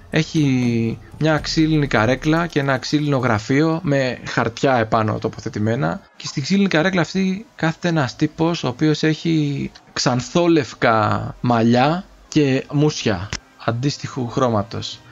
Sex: male